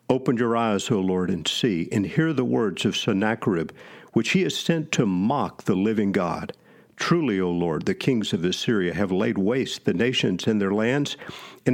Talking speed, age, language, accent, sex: 195 wpm, 50-69, English, American, male